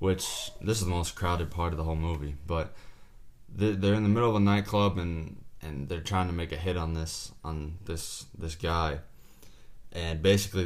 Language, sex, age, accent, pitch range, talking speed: English, male, 20-39, American, 80-95 Hz, 205 wpm